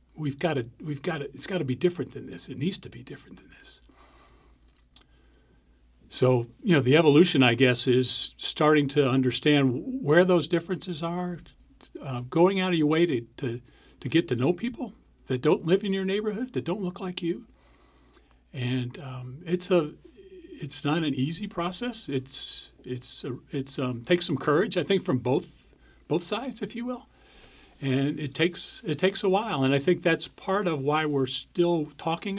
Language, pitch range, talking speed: English, 130-175 Hz, 190 wpm